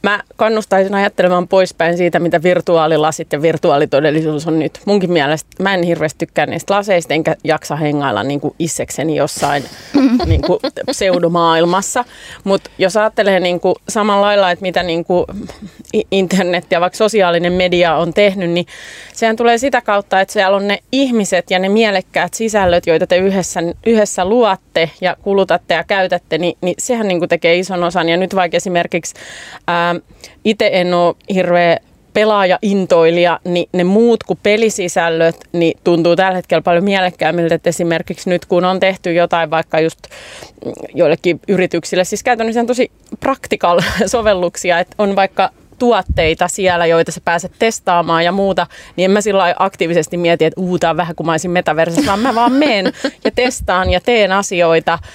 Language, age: Finnish, 30-49